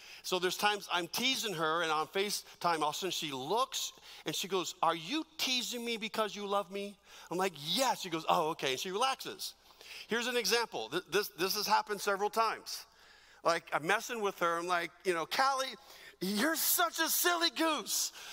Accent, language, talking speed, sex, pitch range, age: American, English, 205 wpm, male, 190-275 Hz, 40-59